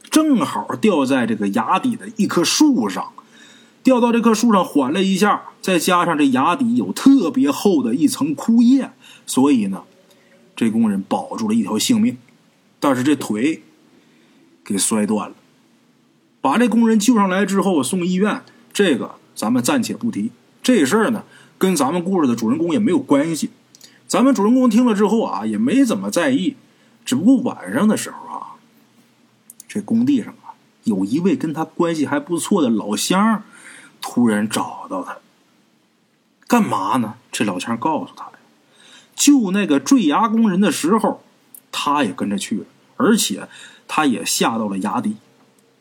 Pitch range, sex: 215-265 Hz, male